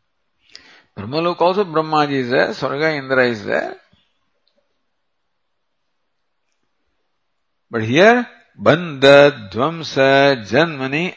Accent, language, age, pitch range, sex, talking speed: Indian, English, 50-69, 130-190 Hz, male, 75 wpm